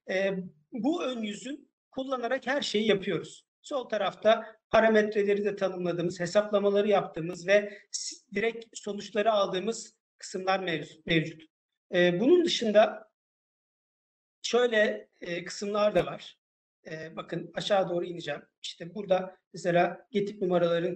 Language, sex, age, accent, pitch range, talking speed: Turkish, male, 50-69, native, 180-235 Hz, 100 wpm